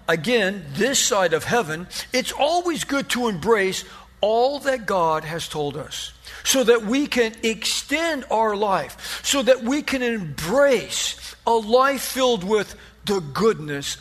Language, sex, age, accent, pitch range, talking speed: English, male, 50-69, American, 175-245 Hz, 145 wpm